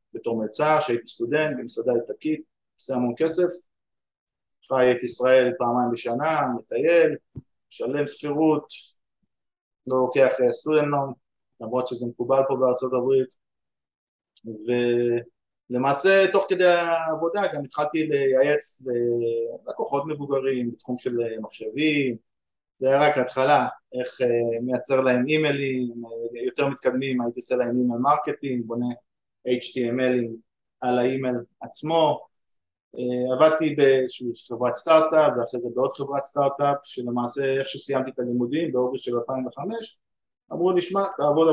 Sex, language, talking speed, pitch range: male, Hebrew, 120 wpm, 120-145 Hz